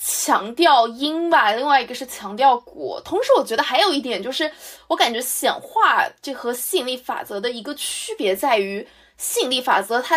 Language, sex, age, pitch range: Chinese, female, 20-39, 215-315 Hz